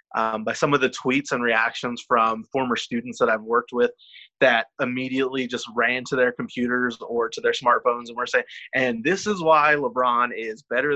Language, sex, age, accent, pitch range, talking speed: English, male, 20-39, American, 120-145 Hz, 195 wpm